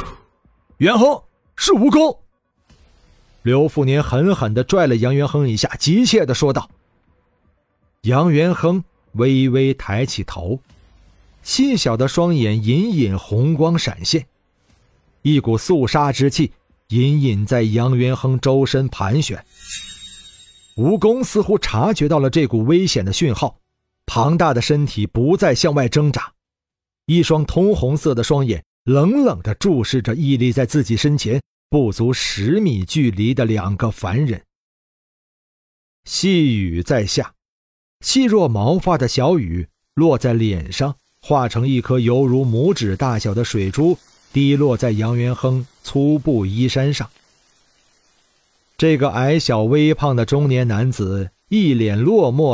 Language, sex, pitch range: Chinese, male, 110-150 Hz